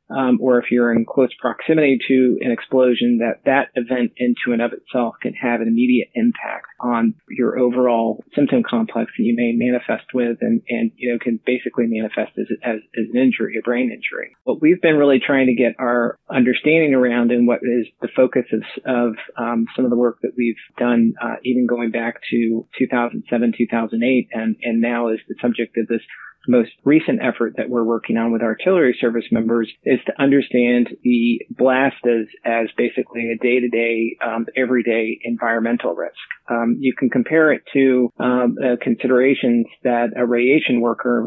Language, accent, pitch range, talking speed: English, American, 115-125 Hz, 185 wpm